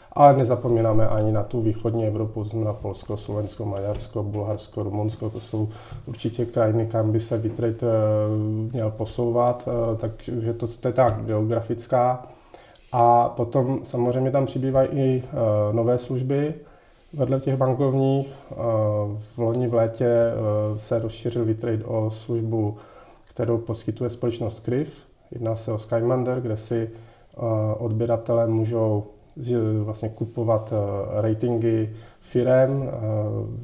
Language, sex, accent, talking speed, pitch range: Czech, male, native, 115 wpm, 110-120 Hz